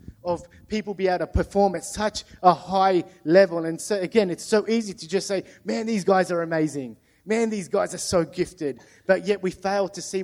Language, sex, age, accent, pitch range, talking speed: English, male, 30-49, Australian, 155-190 Hz, 215 wpm